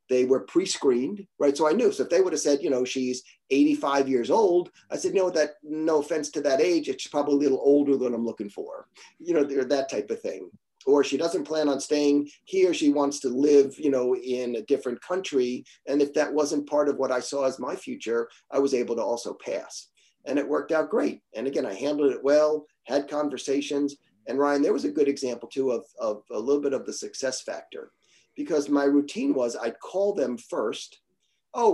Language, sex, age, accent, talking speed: English, male, 40-59, American, 220 wpm